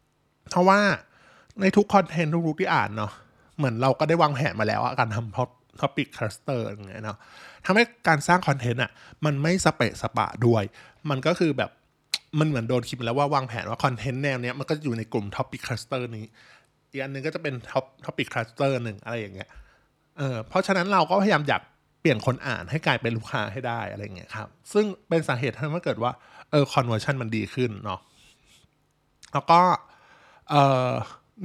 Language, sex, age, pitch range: Thai, male, 20-39, 115-160 Hz